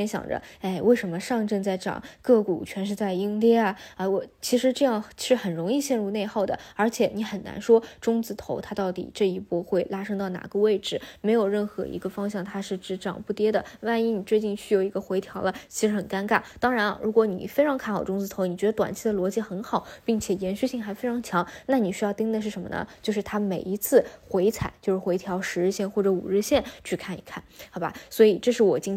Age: 20-39